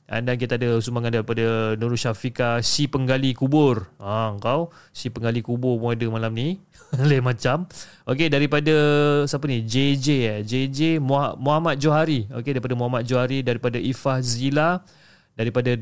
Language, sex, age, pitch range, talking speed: Malay, male, 20-39, 115-150 Hz, 150 wpm